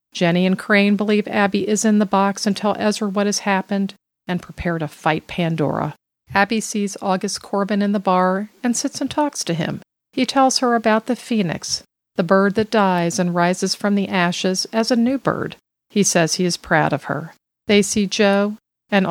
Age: 50-69